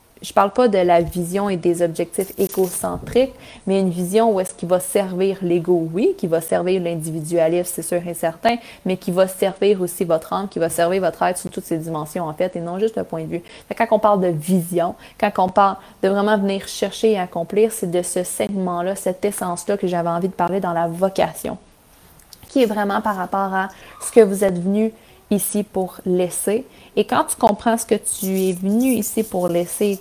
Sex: female